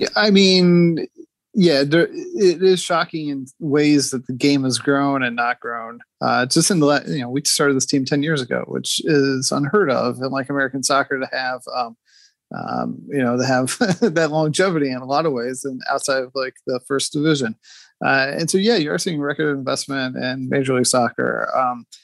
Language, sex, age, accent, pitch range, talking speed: English, male, 30-49, American, 130-155 Hz, 200 wpm